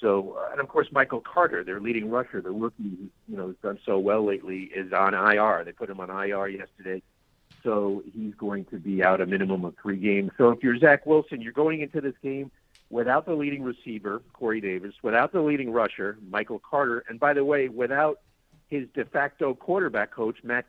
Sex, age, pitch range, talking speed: male, 50-69, 110-145 Hz, 205 wpm